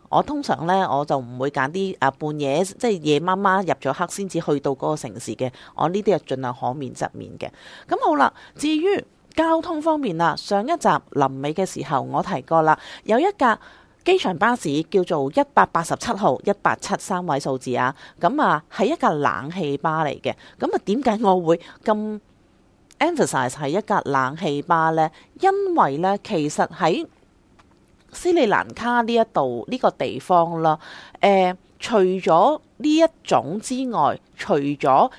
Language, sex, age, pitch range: Chinese, female, 30-49, 145-230 Hz